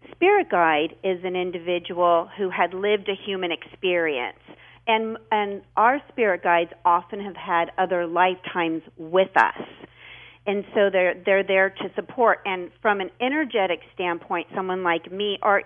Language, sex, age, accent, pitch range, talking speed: English, female, 40-59, American, 170-210 Hz, 150 wpm